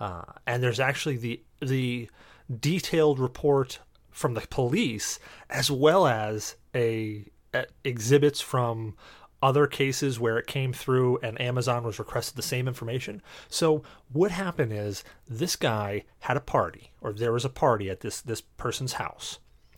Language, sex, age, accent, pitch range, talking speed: English, male, 30-49, American, 115-150 Hz, 150 wpm